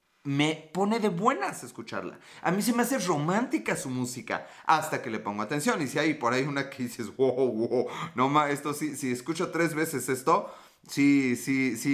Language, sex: Spanish, male